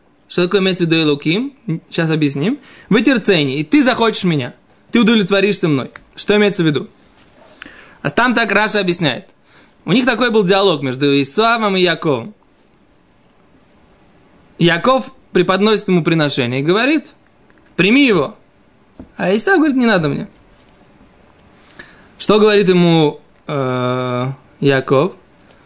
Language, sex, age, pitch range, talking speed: Russian, male, 20-39, 160-230 Hz, 120 wpm